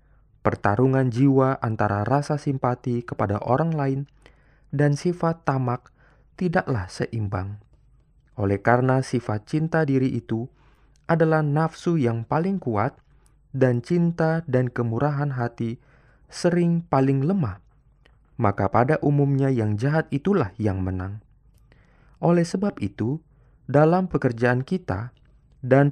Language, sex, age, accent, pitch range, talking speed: Indonesian, male, 20-39, native, 120-150 Hz, 110 wpm